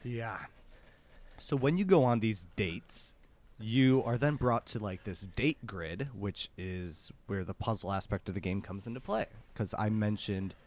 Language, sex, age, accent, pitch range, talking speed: English, male, 20-39, American, 95-125 Hz, 180 wpm